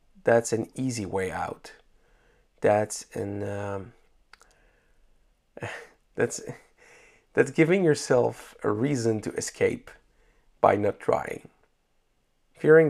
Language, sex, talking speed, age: English, male, 95 wpm, 40-59